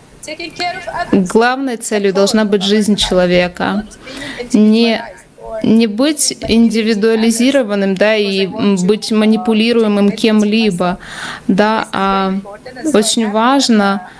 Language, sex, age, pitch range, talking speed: Russian, female, 20-39, 205-240 Hz, 80 wpm